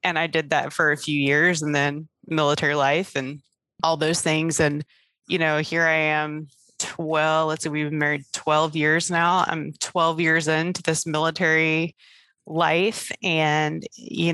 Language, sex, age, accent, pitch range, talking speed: English, female, 20-39, American, 155-180 Hz, 165 wpm